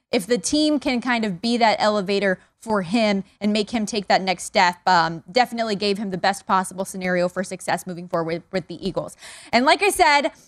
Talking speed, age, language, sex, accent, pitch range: 220 wpm, 20-39, English, female, American, 200-255 Hz